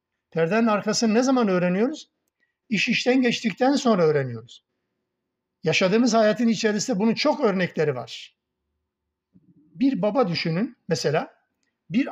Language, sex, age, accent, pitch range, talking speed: Turkish, male, 60-79, native, 155-205 Hz, 110 wpm